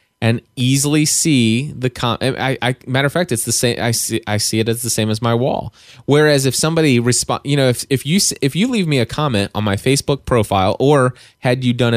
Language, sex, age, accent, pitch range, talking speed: English, male, 20-39, American, 105-135 Hz, 235 wpm